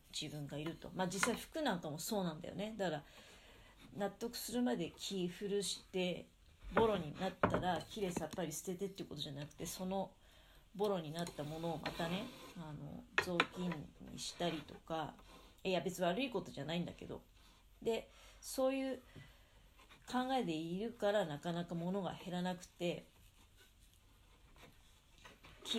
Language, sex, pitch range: Japanese, female, 150-200 Hz